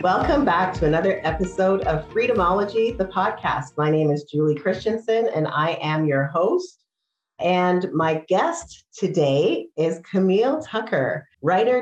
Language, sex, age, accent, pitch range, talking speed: English, female, 40-59, American, 155-195 Hz, 135 wpm